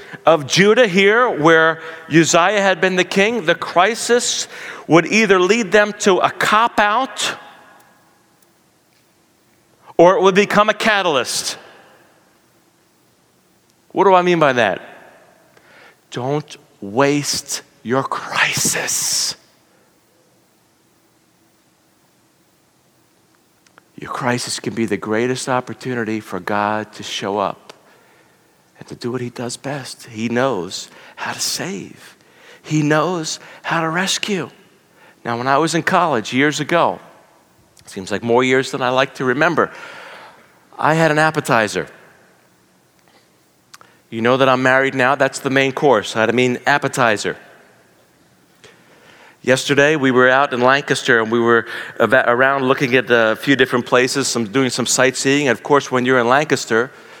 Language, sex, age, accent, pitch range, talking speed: English, male, 50-69, American, 125-175 Hz, 130 wpm